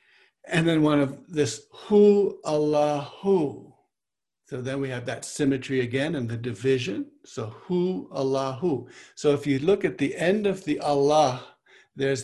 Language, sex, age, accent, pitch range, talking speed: English, male, 60-79, American, 135-175 Hz, 160 wpm